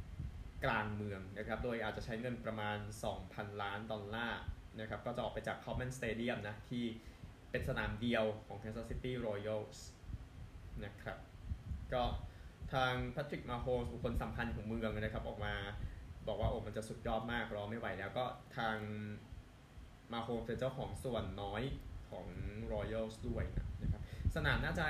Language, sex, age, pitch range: Thai, male, 20-39, 105-125 Hz